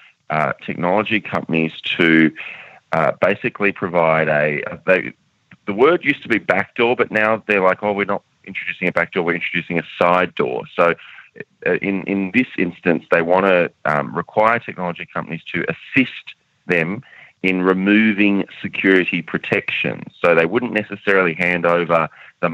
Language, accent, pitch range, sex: English, Australian, 80-100 Hz, male